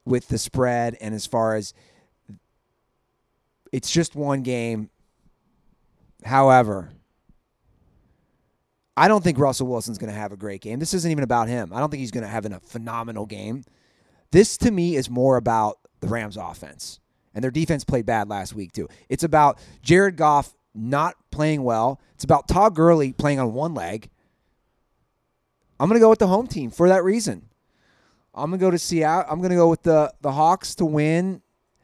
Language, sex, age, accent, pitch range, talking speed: English, male, 30-49, American, 115-165 Hz, 185 wpm